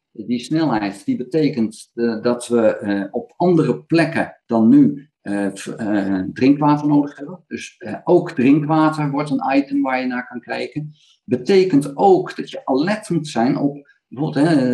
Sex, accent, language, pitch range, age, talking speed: male, Dutch, Dutch, 120-155 Hz, 50-69, 140 wpm